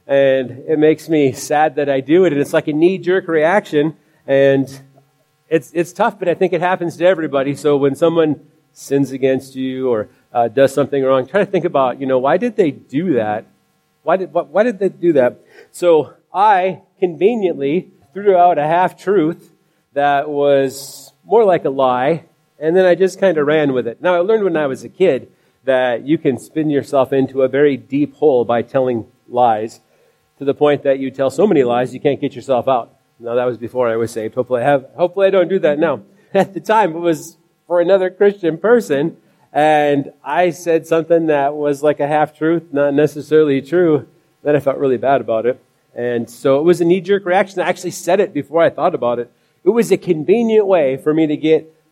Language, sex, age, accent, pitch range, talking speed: English, male, 40-59, American, 135-175 Hz, 210 wpm